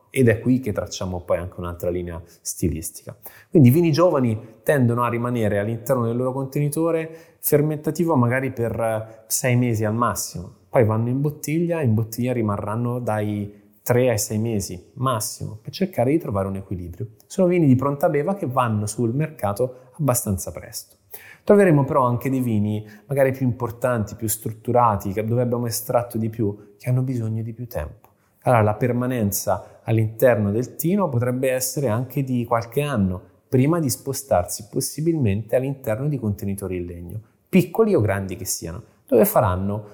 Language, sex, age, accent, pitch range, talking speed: Italian, male, 20-39, native, 105-135 Hz, 160 wpm